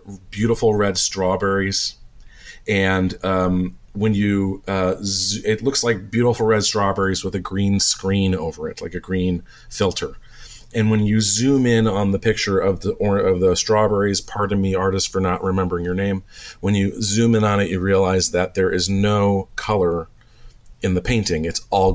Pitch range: 95-110 Hz